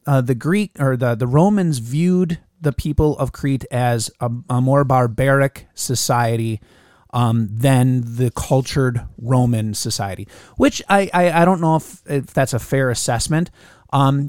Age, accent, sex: 30-49, American, male